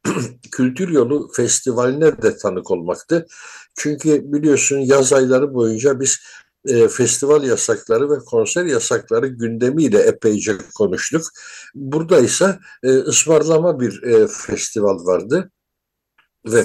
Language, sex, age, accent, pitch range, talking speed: Turkish, male, 60-79, native, 115-190 Hz, 105 wpm